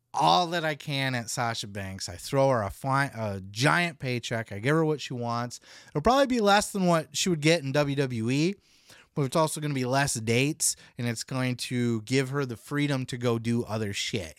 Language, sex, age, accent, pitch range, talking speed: English, male, 30-49, American, 115-155 Hz, 215 wpm